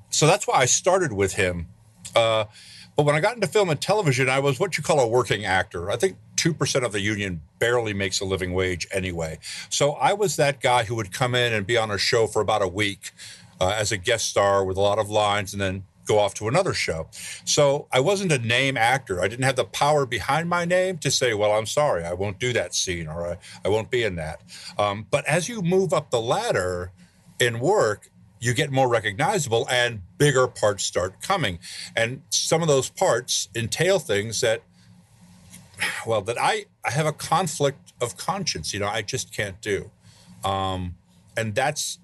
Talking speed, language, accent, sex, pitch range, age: 210 wpm, English, American, male, 95-140 Hz, 50-69